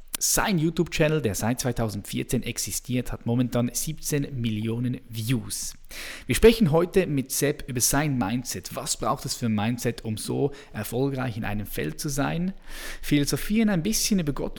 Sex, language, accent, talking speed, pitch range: male, German, German, 155 wpm, 115-150 Hz